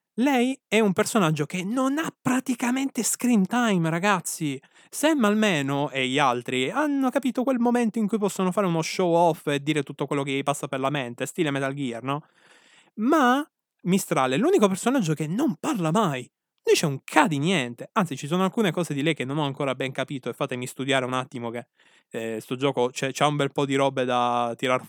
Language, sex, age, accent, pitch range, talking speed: Italian, male, 20-39, native, 140-220 Hz, 205 wpm